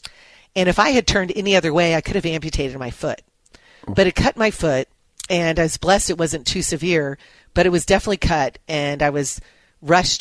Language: English